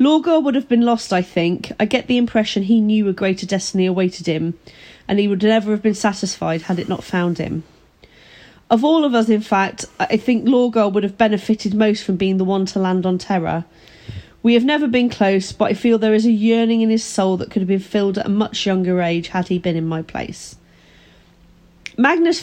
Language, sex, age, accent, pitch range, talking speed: English, female, 30-49, British, 190-230 Hz, 220 wpm